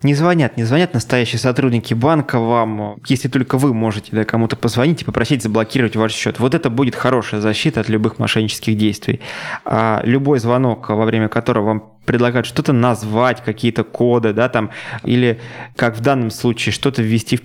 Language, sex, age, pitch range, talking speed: Russian, male, 20-39, 110-130 Hz, 175 wpm